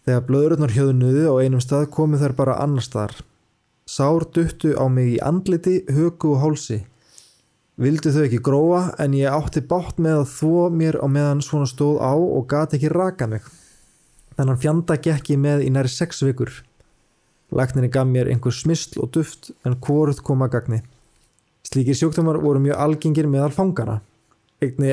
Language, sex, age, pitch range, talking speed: English, male, 20-39, 130-160 Hz, 170 wpm